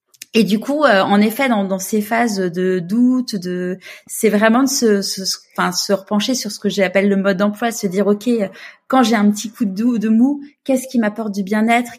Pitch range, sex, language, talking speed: 190-230 Hz, female, French, 235 wpm